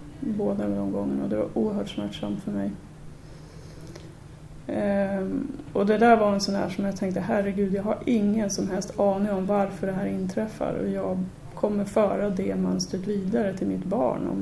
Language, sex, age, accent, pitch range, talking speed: Swedish, female, 30-49, native, 145-210 Hz, 185 wpm